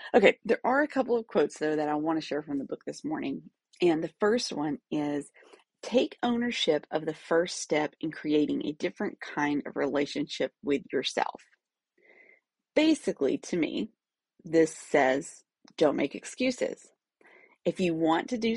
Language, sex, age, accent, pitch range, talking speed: English, female, 30-49, American, 155-255 Hz, 165 wpm